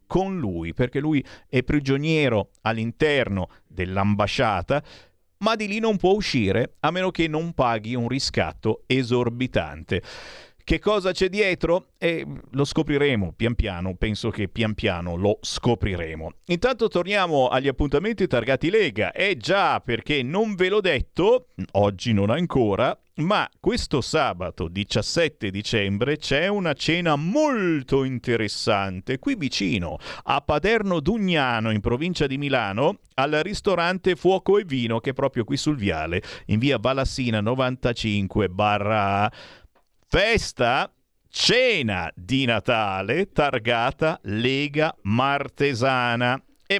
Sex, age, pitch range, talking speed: male, 50-69, 105-155 Hz, 125 wpm